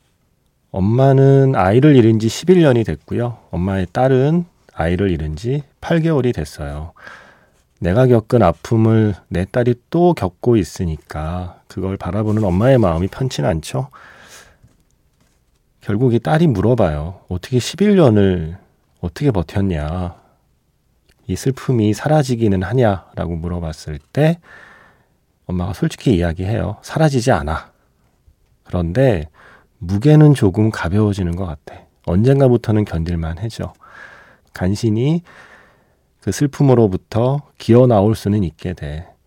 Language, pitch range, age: Korean, 90-125 Hz, 40-59